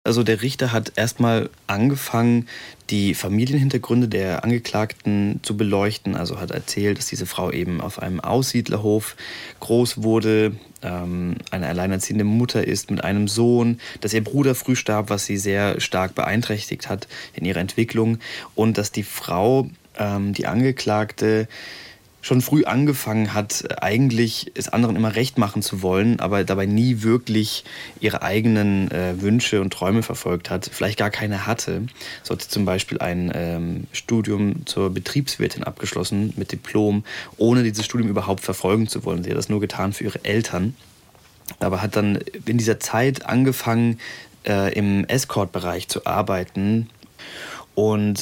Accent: German